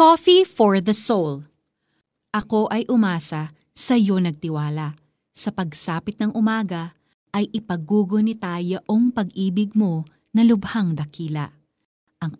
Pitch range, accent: 170-235 Hz, native